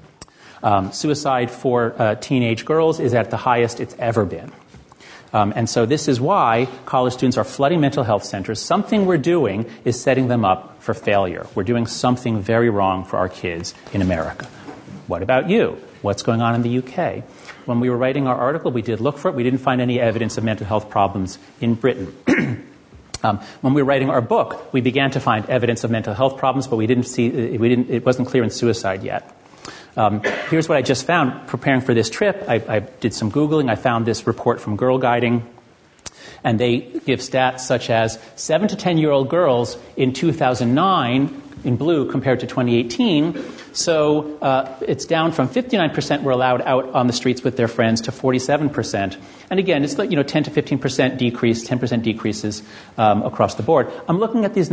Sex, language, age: male, English, 40-59